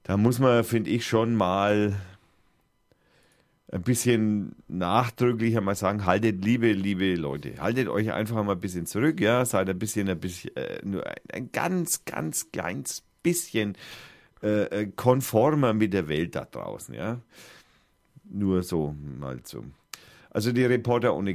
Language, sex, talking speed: German, male, 145 wpm